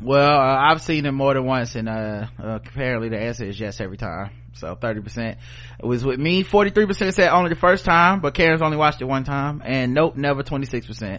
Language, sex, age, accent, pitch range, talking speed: English, male, 20-39, American, 120-165 Hz, 215 wpm